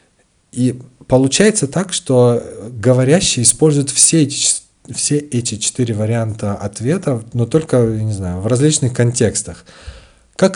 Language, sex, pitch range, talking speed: Russian, male, 95-120 Hz, 115 wpm